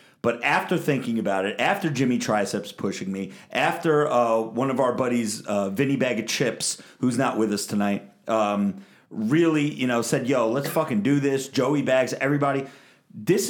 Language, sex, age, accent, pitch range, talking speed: English, male, 40-59, American, 110-150 Hz, 180 wpm